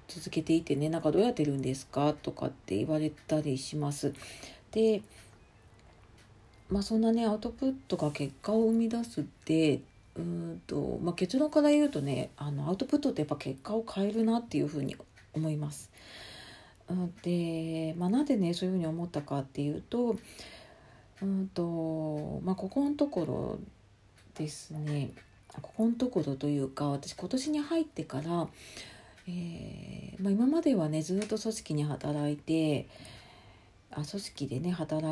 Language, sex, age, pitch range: Japanese, female, 40-59, 140-195 Hz